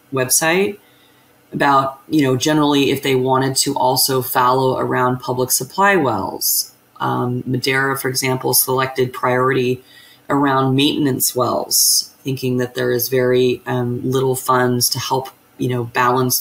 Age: 20-39